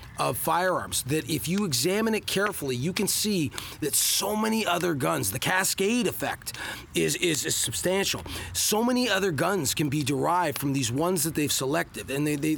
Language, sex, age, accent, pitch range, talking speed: English, male, 30-49, American, 145-200 Hz, 185 wpm